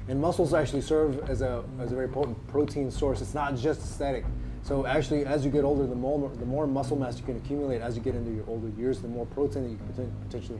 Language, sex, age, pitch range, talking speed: English, male, 20-39, 115-140 Hz, 255 wpm